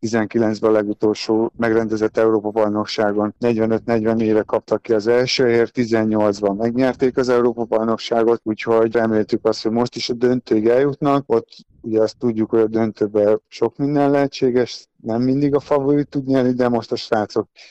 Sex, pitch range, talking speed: male, 110-125 Hz, 155 wpm